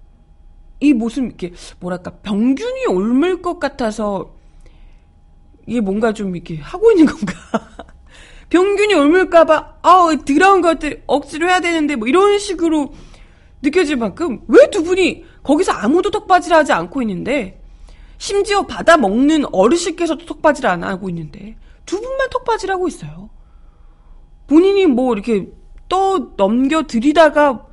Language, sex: Korean, female